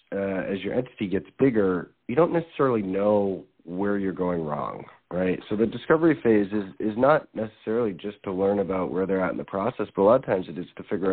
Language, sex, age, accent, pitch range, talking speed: English, male, 40-59, American, 95-115 Hz, 225 wpm